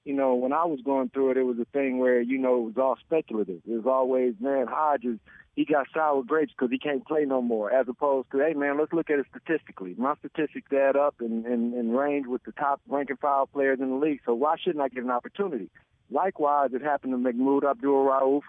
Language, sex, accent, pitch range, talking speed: English, male, American, 130-150 Hz, 235 wpm